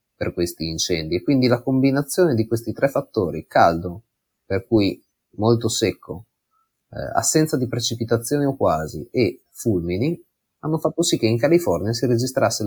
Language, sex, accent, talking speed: Italian, male, native, 150 wpm